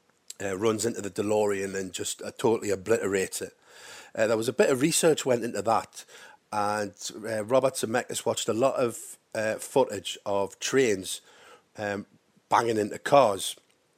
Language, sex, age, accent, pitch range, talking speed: English, male, 40-59, British, 105-130 Hz, 165 wpm